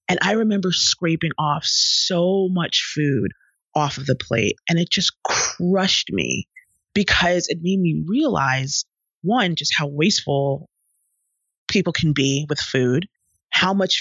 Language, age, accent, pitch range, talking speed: English, 30-49, American, 140-180 Hz, 140 wpm